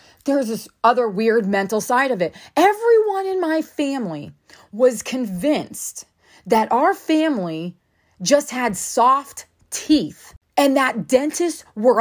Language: English